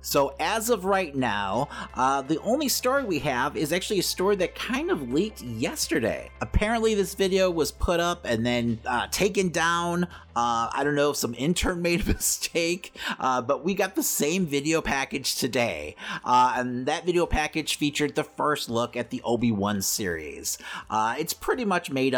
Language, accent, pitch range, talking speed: English, American, 110-140 Hz, 185 wpm